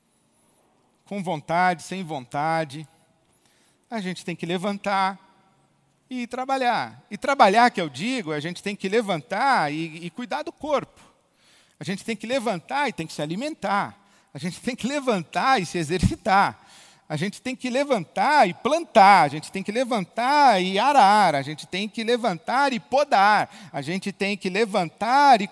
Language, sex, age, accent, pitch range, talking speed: Portuguese, male, 50-69, Brazilian, 170-245 Hz, 165 wpm